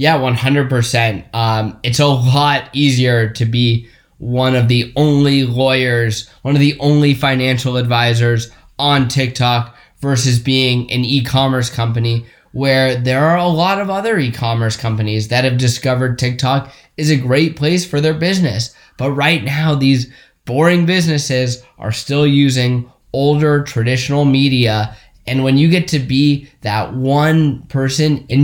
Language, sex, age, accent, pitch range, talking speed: English, male, 20-39, American, 120-150 Hz, 145 wpm